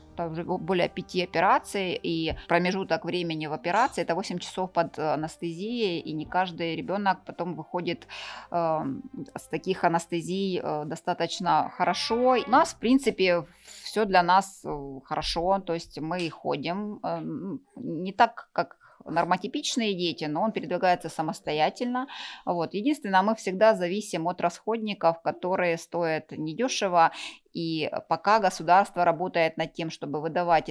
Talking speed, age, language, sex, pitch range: 130 wpm, 20-39, Ukrainian, female, 165-200 Hz